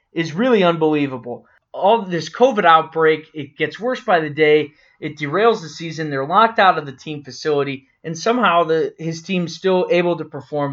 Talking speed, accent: 185 wpm, American